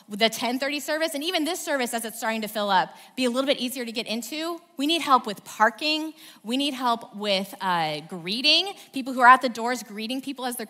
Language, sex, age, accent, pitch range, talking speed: English, female, 20-39, American, 205-275 Hz, 235 wpm